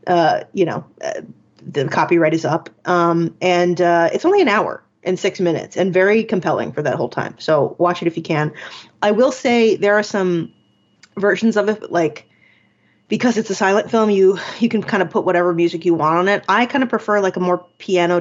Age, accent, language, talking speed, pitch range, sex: 20-39, American, English, 215 wpm, 175-215 Hz, female